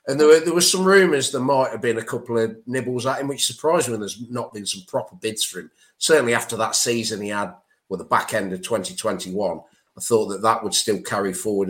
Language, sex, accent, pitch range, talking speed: English, male, British, 120-155 Hz, 245 wpm